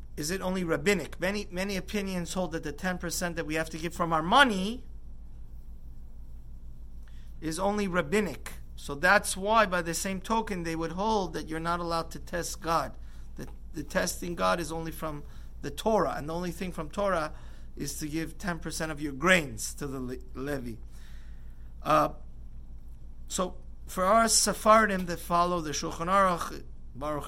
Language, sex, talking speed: English, male, 165 wpm